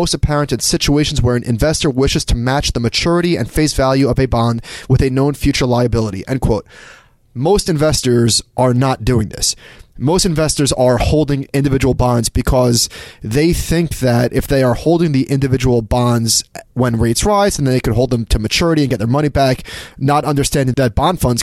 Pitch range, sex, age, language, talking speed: 120-145 Hz, male, 20-39, English, 190 wpm